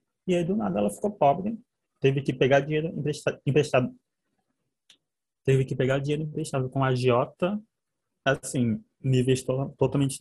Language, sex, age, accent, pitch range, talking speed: Portuguese, male, 20-39, Brazilian, 125-155 Hz, 145 wpm